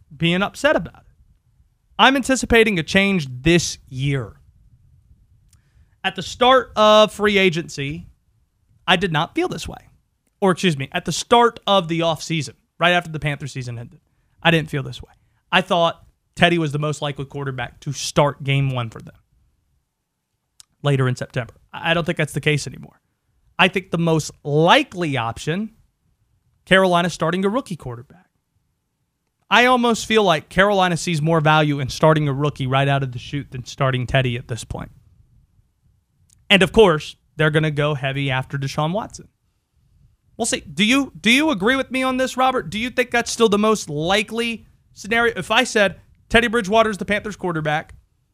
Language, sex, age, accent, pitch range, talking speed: English, male, 30-49, American, 140-200 Hz, 175 wpm